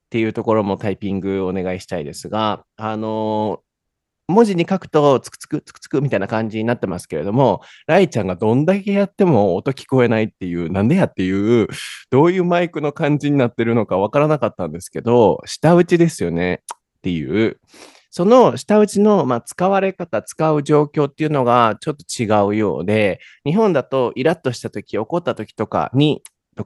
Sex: male